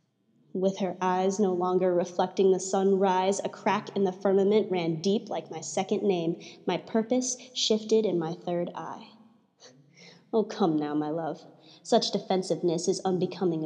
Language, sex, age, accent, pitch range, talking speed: English, female, 20-39, American, 180-215 Hz, 155 wpm